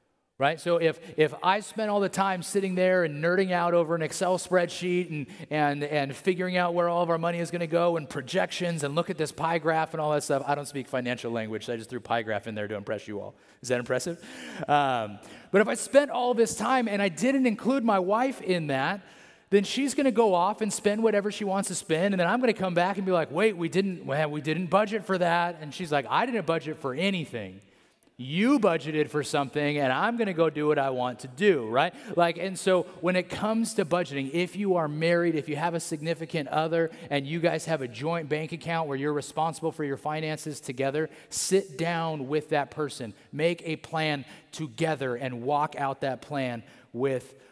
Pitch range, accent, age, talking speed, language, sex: 145-185 Hz, American, 30-49, 230 wpm, English, male